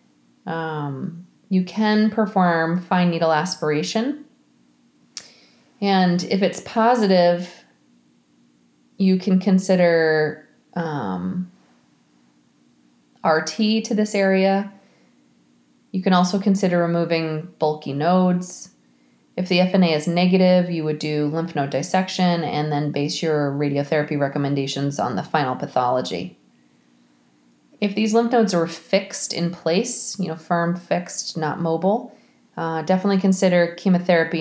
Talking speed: 115 wpm